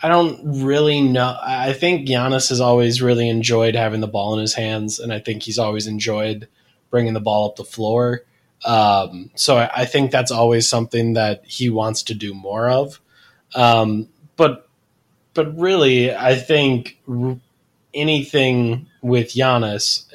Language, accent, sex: English, American, male